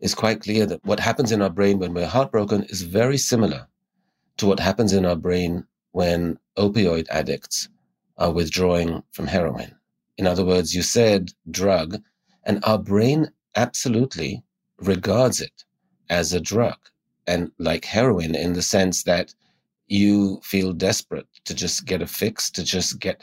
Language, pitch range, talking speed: English, 90-105 Hz, 160 wpm